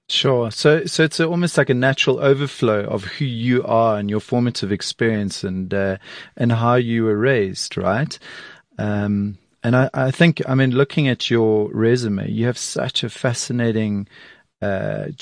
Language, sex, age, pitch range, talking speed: English, male, 30-49, 105-130 Hz, 170 wpm